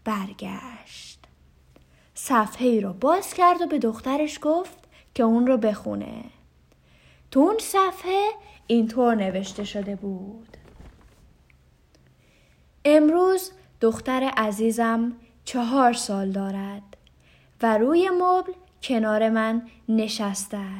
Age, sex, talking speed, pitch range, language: 10-29, female, 90 wpm, 205-305 Hz, Persian